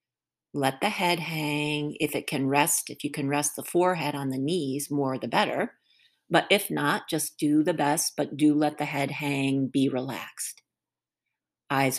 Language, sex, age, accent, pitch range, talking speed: English, female, 50-69, American, 140-165 Hz, 180 wpm